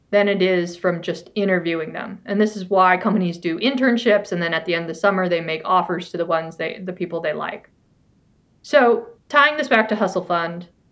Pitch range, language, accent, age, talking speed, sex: 180-220 Hz, English, American, 20-39, 220 wpm, female